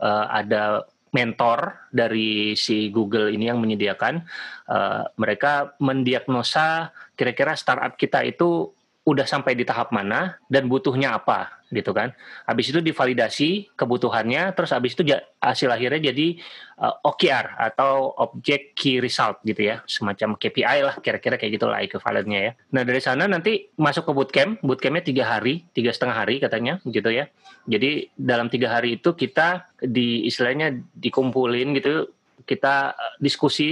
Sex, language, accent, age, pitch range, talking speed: male, Indonesian, native, 30-49, 115-145 Hz, 140 wpm